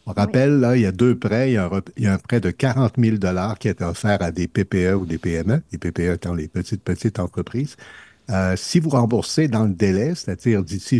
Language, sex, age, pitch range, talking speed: French, male, 60-79, 95-125 Hz, 245 wpm